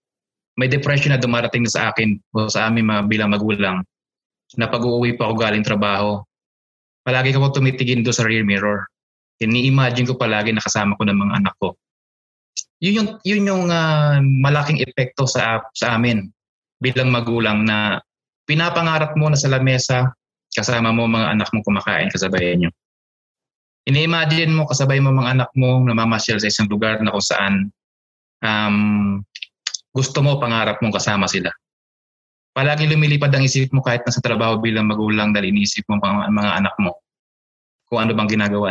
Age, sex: 20-39, male